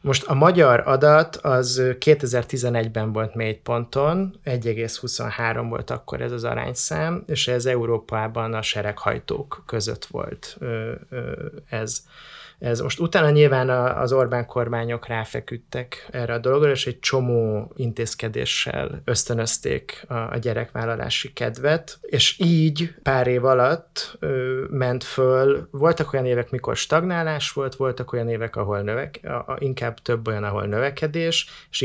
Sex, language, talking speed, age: male, Hungarian, 130 wpm, 20-39